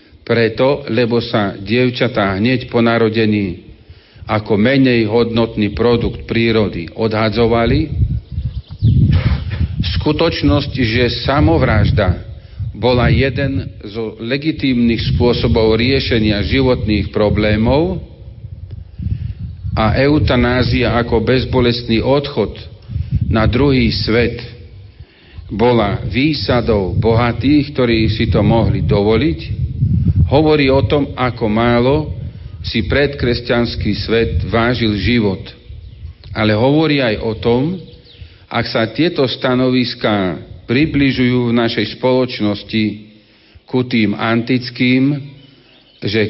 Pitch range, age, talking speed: 105-125 Hz, 50-69, 85 wpm